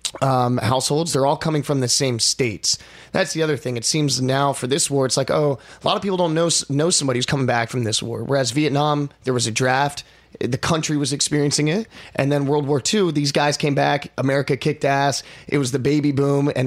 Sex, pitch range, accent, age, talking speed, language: male, 125-145 Hz, American, 30-49, 235 wpm, English